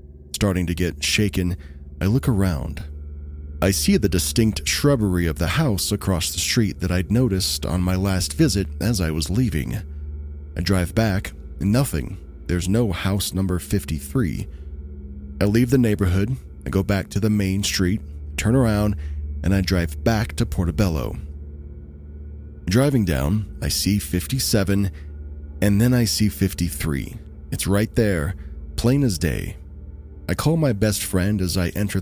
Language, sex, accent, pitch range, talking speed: English, male, American, 75-105 Hz, 150 wpm